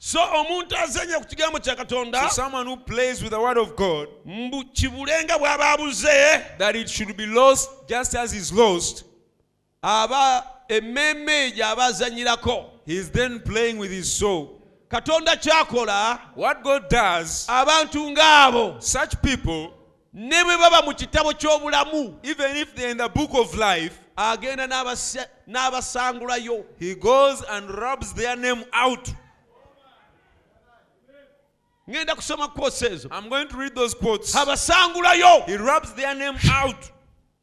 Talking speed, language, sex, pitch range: 90 wpm, English, male, 240-305 Hz